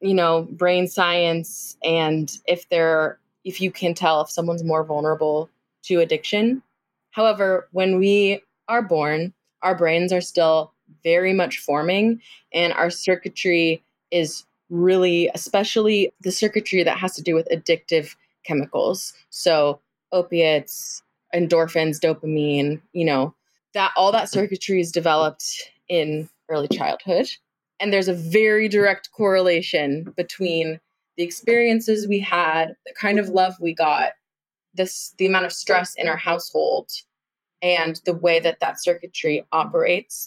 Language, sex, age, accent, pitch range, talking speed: English, female, 20-39, American, 165-195 Hz, 135 wpm